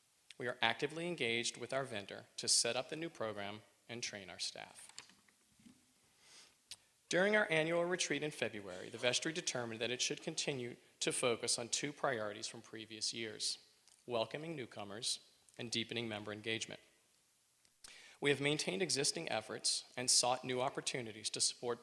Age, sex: 40-59, male